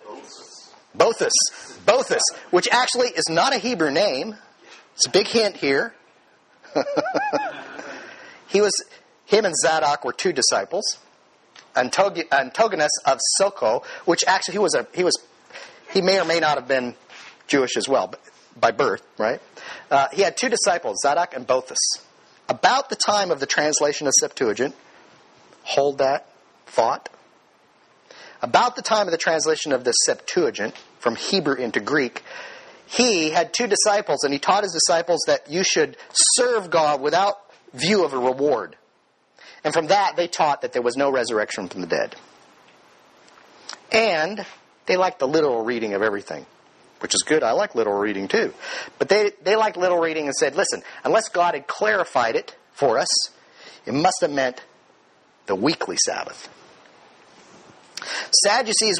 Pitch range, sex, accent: 150-240 Hz, male, American